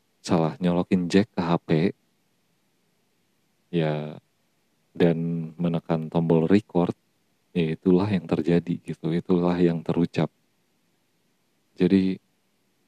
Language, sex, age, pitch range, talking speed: Indonesian, male, 40-59, 85-100 Hz, 90 wpm